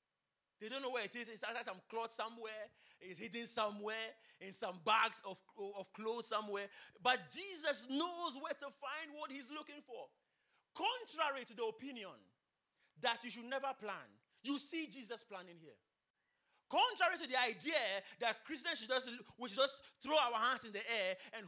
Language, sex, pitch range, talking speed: English, male, 205-285 Hz, 175 wpm